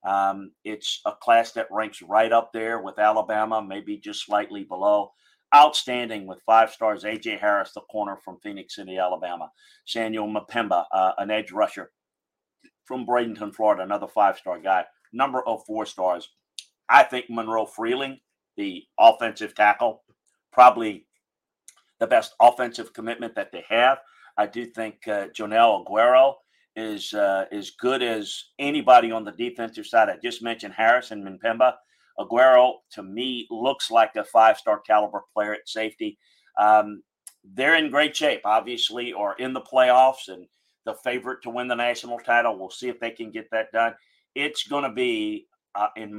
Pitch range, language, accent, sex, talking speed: 105-130 Hz, English, American, male, 155 wpm